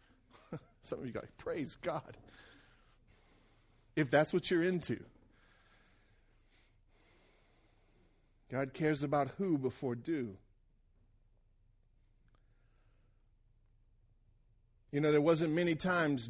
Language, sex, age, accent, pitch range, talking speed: English, male, 40-59, American, 115-175 Hz, 90 wpm